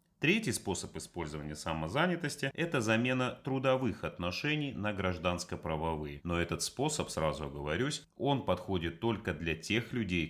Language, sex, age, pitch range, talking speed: Russian, male, 30-49, 80-115 Hz, 130 wpm